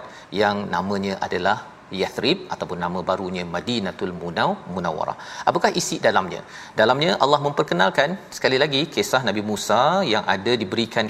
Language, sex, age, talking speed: Malayalam, male, 40-59, 130 wpm